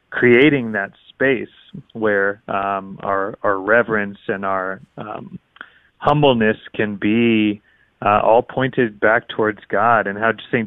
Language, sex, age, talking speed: English, male, 30-49, 130 wpm